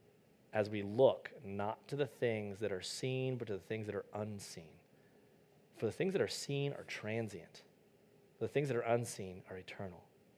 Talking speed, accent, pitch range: 185 wpm, American, 110-175 Hz